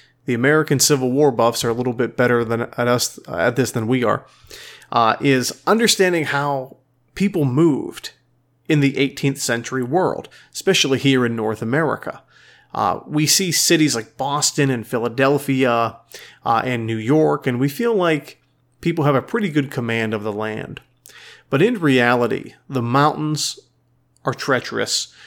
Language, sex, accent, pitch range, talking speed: English, male, American, 120-145 Hz, 160 wpm